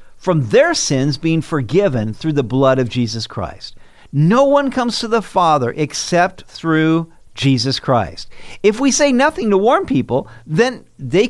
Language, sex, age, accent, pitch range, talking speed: English, male, 50-69, American, 125-190 Hz, 160 wpm